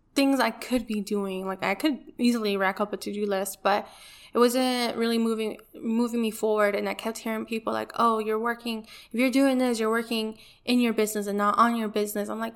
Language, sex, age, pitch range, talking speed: English, female, 10-29, 210-240 Hz, 225 wpm